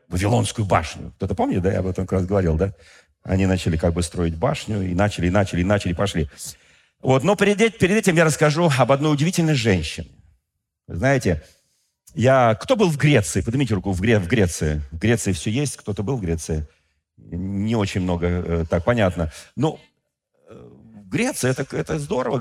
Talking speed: 175 wpm